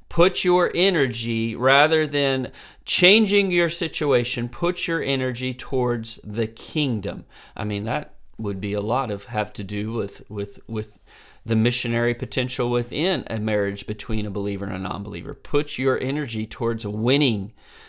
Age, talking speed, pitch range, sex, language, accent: 40-59, 150 wpm, 110-135 Hz, male, English, American